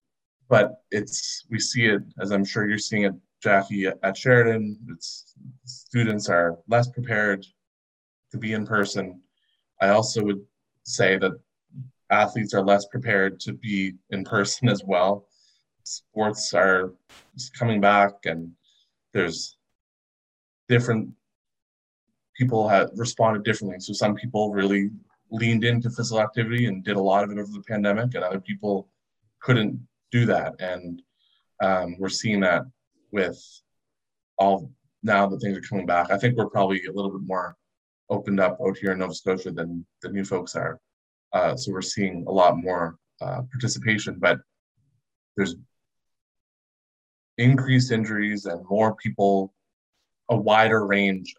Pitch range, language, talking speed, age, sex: 95-110 Hz, English, 145 wpm, 20-39, male